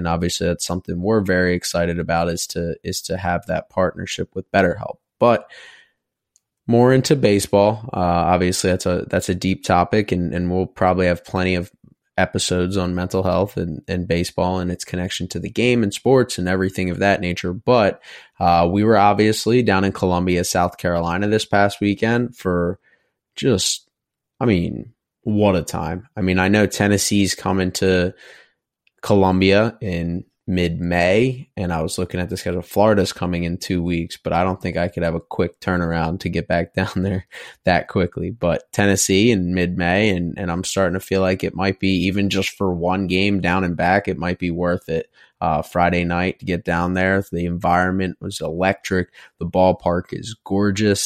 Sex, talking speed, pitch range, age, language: male, 185 wpm, 85-100 Hz, 20-39, English